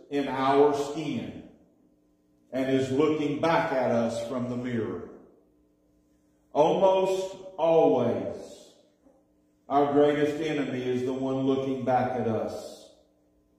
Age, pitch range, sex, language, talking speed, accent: 40-59, 150-215 Hz, male, English, 105 wpm, American